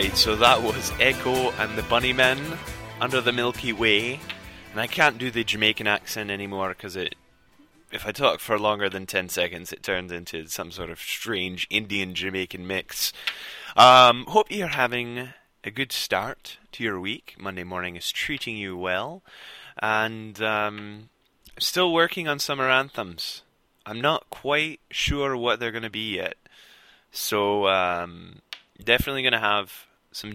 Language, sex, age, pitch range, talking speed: English, male, 20-39, 95-120 Hz, 155 wpm